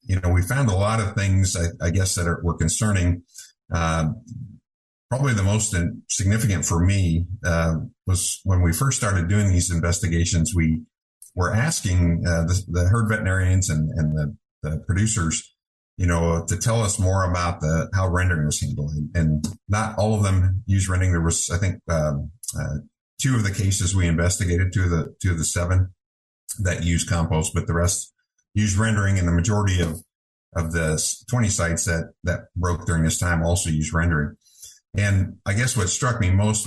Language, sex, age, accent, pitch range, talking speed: English, male, 50-69, American, 85-100 Hz, 185 wpm